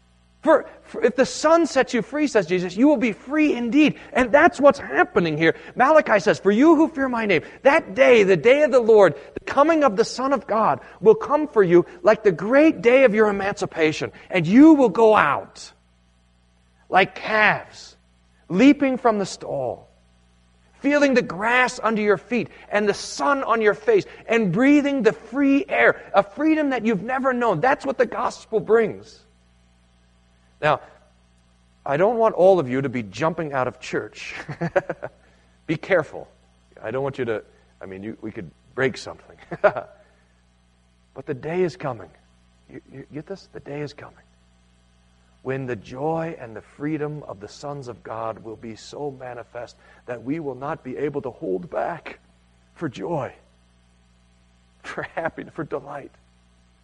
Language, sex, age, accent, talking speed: English, male, 40-59, American, 170 wpm